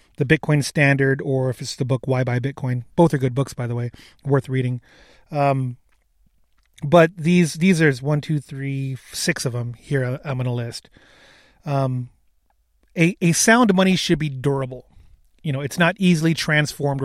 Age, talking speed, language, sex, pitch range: 30-49, 175 wpm, English, male, 130-160 Hz